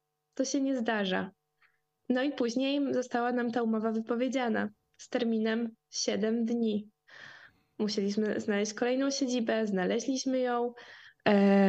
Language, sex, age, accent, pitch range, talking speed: Polish, female, 20-39, native, 215-250 Hz, 115 wpm